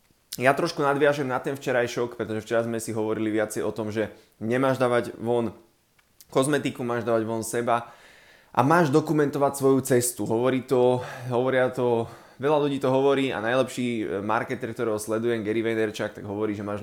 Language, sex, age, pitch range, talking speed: Slovak, male, 20-39, 105-130 Hz, 170 wpm